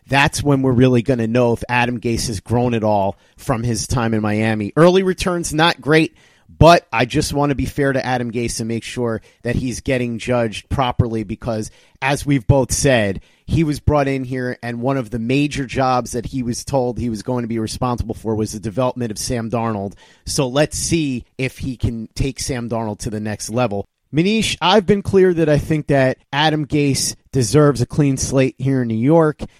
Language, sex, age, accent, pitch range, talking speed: English, male, 30-49, American, 115-140 Hz, 215 wpm